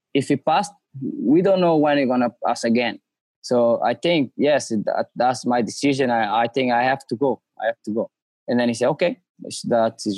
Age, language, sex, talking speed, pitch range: 20-39, English, male, 220 wpm, 130-155 Hz